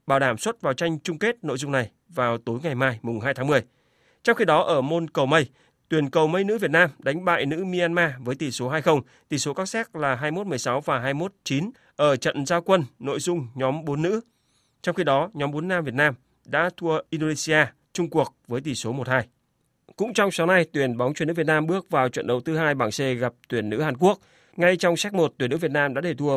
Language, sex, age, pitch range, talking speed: Vietnamese, male, 30-49, 130-165 Hz, 245 wpm